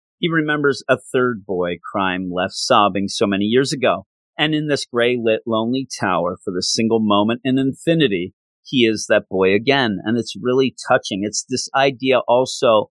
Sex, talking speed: male, 170 wpm